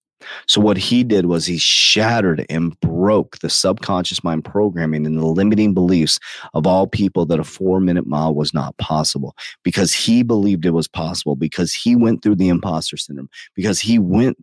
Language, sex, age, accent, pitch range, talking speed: English, male, 30-49, American, 85-105 Hz, 185 wpm